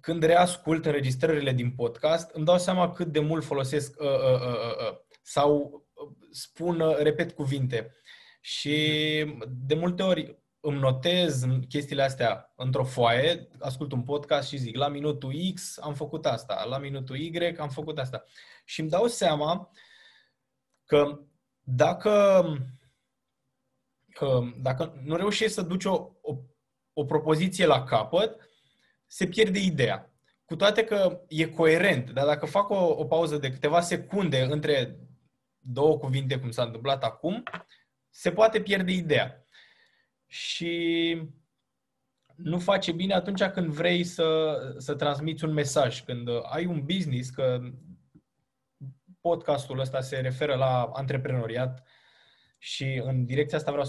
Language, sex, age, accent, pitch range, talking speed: Romanian, male, 20-39, native, 135-175 Hz, 130 wpm